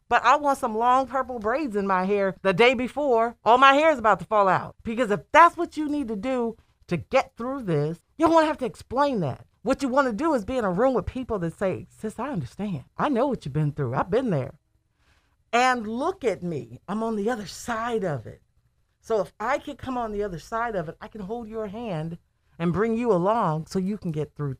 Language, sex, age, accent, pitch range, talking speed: English, female, 40-59, American, 170-255 Hz, 250 wpm